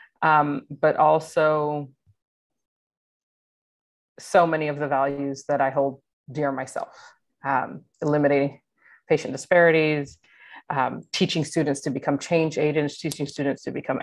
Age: 30-49